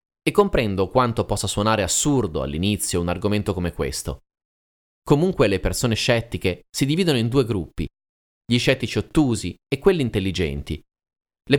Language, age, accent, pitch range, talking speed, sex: Italian, 30-49, native, 95-135 Hz, 140 wpm, male